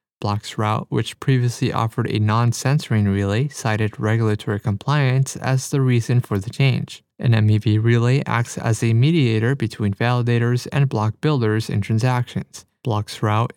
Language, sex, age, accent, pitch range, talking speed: English, male, 30-49, American, 110-130 Hz, 135 wpm